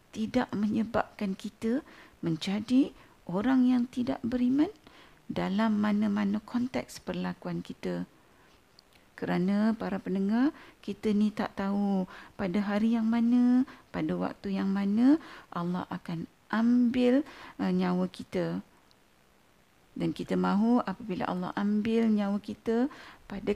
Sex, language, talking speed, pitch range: female, Malay, 110 wpm, 185-250 Hz